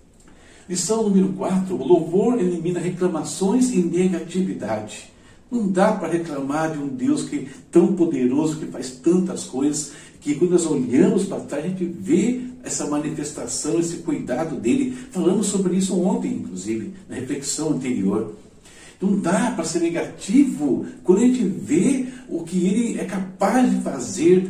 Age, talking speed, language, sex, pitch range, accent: 60-79, 150 wpm, Portuguese, male, 155-205 Hz, Brazilian